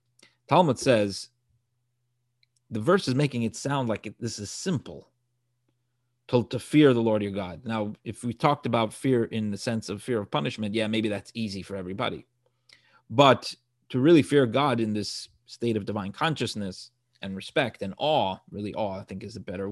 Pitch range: 110-130 Hz